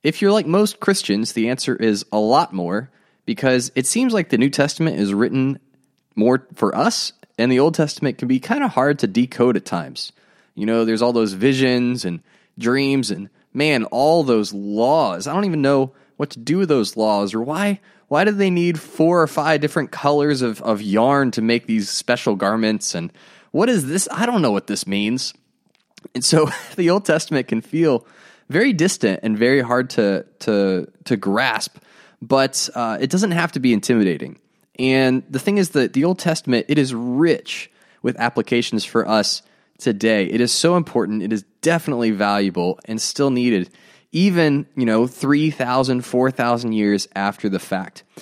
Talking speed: 185 wpm